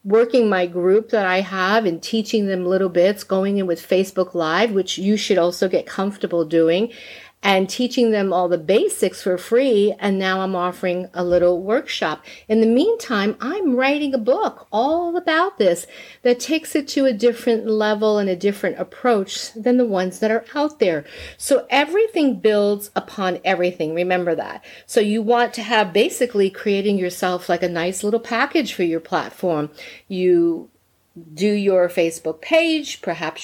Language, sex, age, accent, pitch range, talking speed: English, female, 50-69, American, 185-255 Hz, 170 wpm